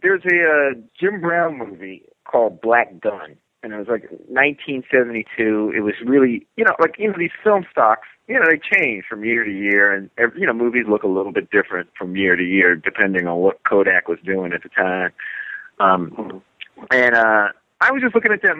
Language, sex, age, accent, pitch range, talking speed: English, male, 30-49, American, 105-160 Hz, 210 wpm